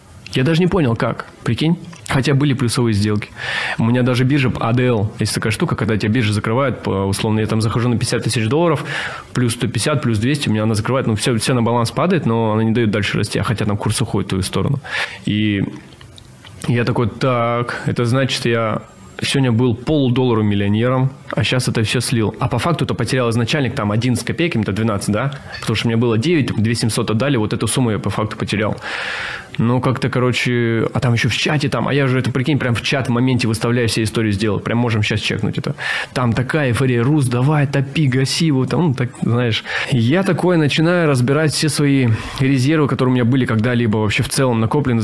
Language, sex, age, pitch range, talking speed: Russian, male, 20-39, 110-135 Hz, 210 wpm